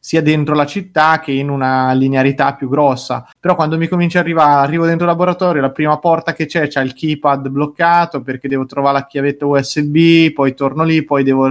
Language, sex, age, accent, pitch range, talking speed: Italian, male, 20-39, native, 135-155 Hz, 205 wpm